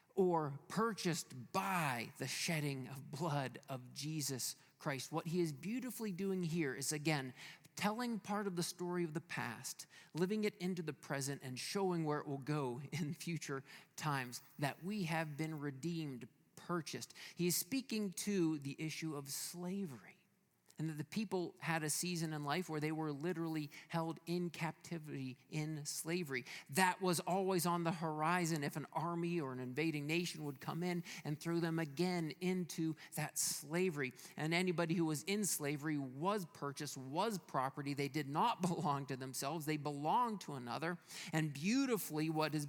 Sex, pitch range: male, 140-175 Hz